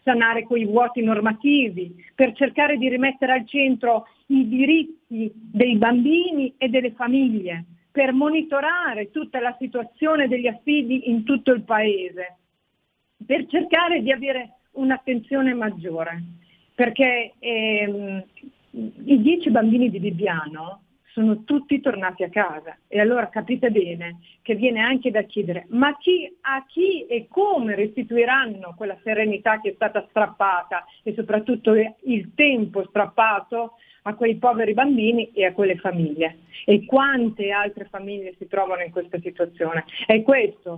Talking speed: 135 wpm